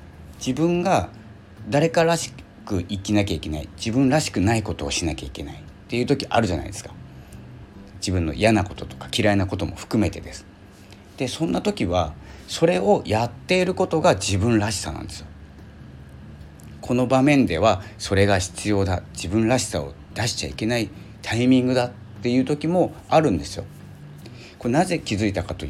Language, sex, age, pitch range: Japanese, male, 40-59, 85-115 Hz